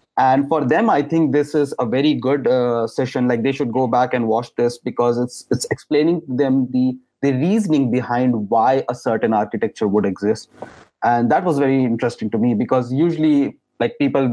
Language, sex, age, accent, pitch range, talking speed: English, male, 30-49, Indian, 120-140 Hz, 195 wpm